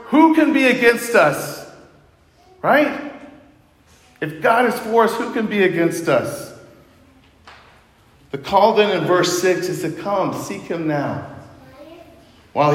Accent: American